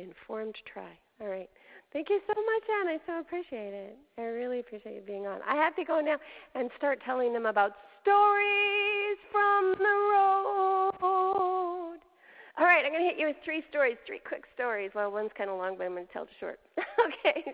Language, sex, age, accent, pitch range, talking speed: English, female, 40-59, American, 200-295 Hz, 200 wpm